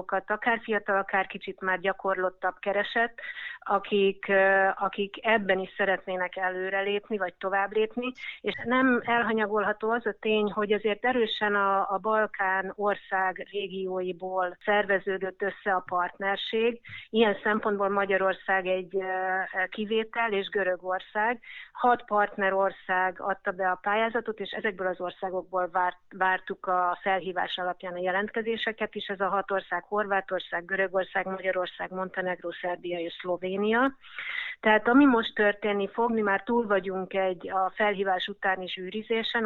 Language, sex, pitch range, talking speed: Hungarian, female, 185-210 Hz, 130 wpm